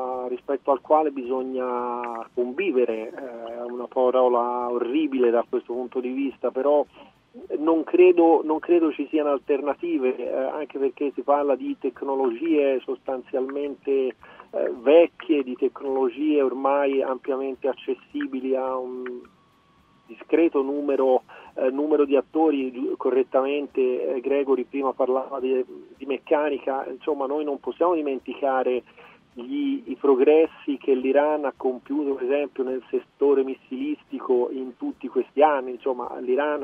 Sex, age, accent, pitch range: male, 40-59, native, 130-170 Hz